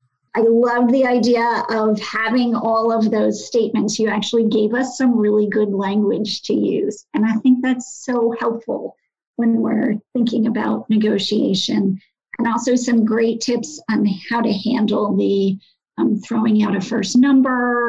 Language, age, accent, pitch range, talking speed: English, 50-69, American, 215-245 Hz, 160 wpm